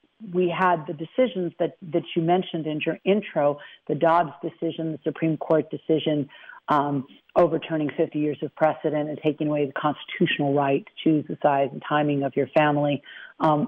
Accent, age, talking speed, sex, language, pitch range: American, 50-69, 175 wpm, female, English, 150-175 Hz